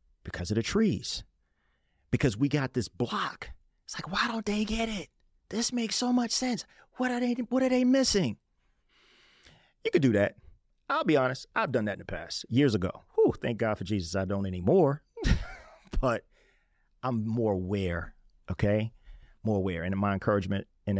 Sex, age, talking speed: male, 40-59, 175 wpm